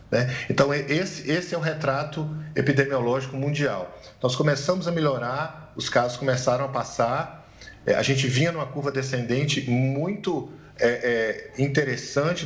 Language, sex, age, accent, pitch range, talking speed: Portuguese, male, 50-69, Brazilian, 120-145 Hz, 115 wpm